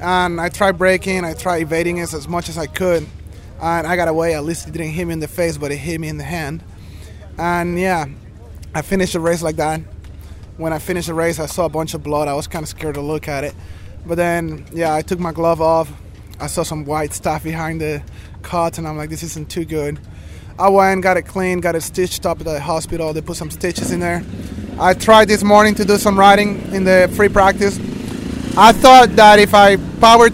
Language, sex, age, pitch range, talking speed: English, male, 20-39, 155-190 Hz, 235 wpm